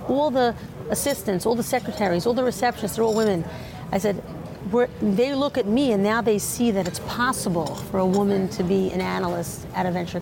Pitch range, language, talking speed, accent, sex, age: 185-215 Hz, English, 200 wpm, American, female, 40-59